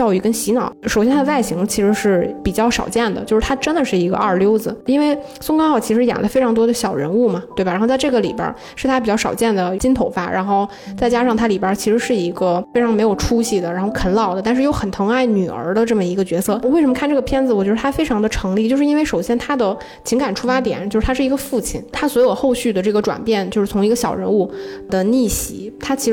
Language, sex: Chinese, female